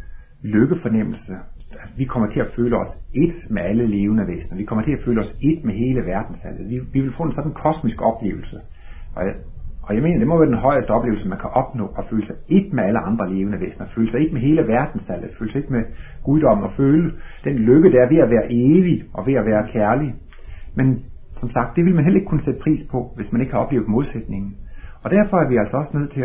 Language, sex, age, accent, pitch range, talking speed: Danish, male, 60-79, native, 100-135 Hz, 235 wpm